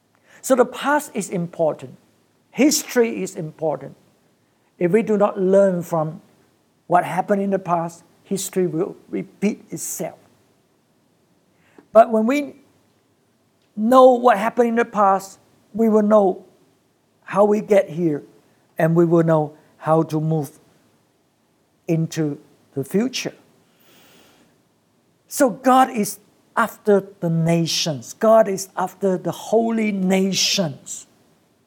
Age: 60-79